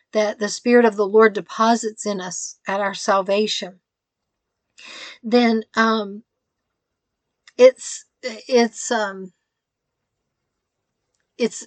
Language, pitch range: English, 200-240 Hz